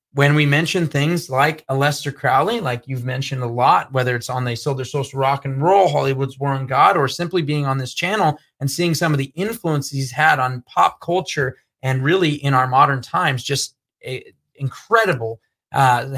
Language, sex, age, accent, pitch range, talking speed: English, male, 30-49, American, 125-150 Hz, 195 wpm